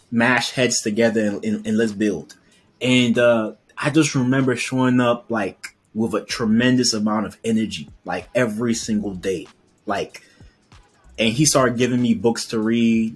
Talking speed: 160 wpm